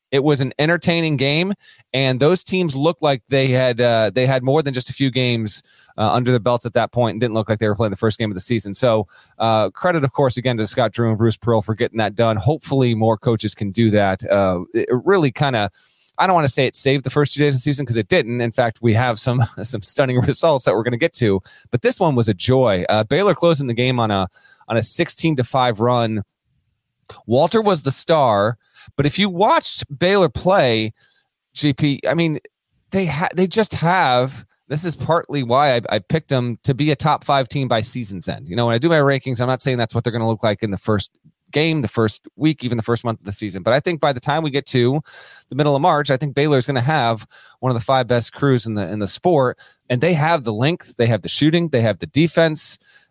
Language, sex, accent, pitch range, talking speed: English, male, American, 115-150 Hz, 255 wpm